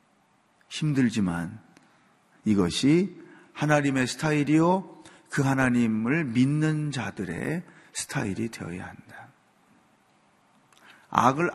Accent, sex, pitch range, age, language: native, male, 115-175 Hz, 40-59, Korean